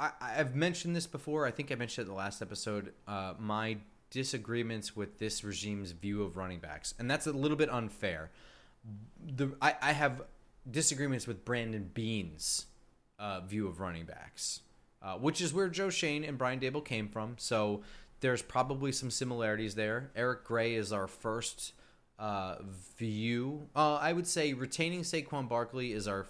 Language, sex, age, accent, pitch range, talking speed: English, male, 20-39, American, 100-135 Hz, 170 wpm